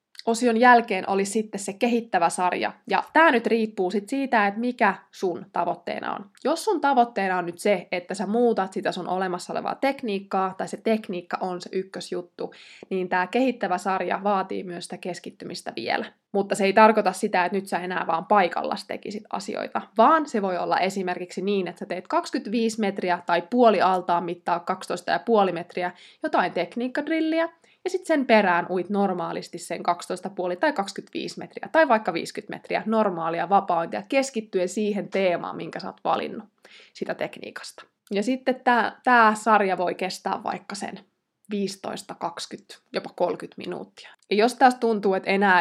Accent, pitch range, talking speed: native, 185-240 Hz, 160 wpm